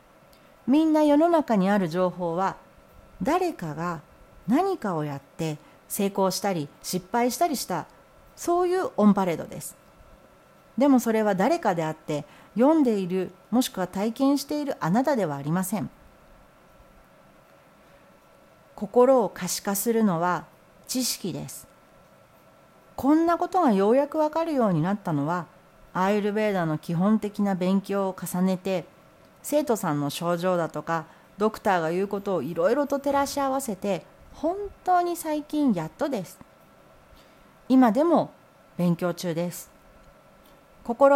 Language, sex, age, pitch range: Japanese, female, 40-59, 180-270 Hz